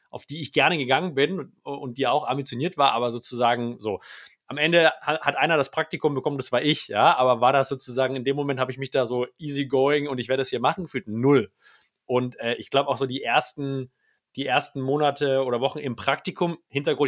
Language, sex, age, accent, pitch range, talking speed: German, male, 30-49, German, 130-150 Hz, 220 wpm